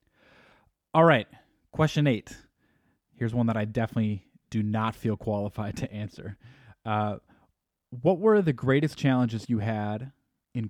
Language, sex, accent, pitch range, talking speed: English, male, American, 105-125 Hz, 135 wpm